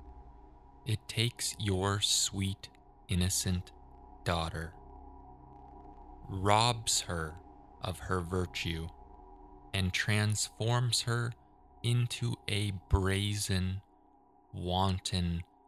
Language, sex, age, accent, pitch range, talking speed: English, male, 20-39, American, 85-110 Hz, 70 wpm